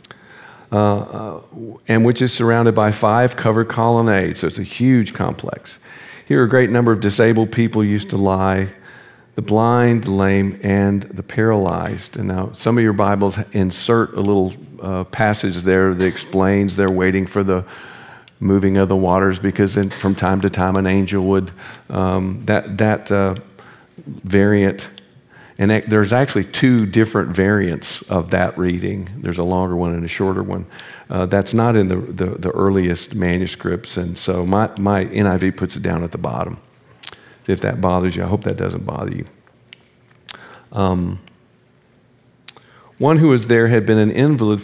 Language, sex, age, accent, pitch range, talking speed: English, male, 50-69, American, 95-115 Hz, 165 wpm